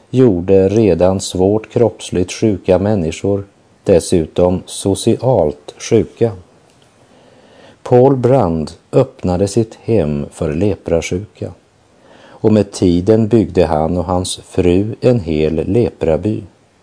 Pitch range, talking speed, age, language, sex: 85-115 Hz, 95 wpm, 50-69, Danish, male